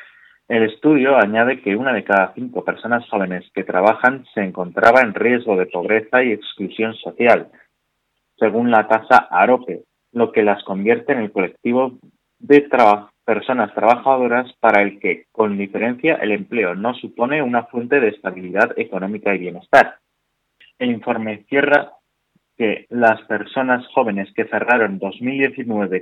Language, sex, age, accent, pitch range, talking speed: Spanish, male, 30-49, Spanish, 100-130 Hz, 140 wpm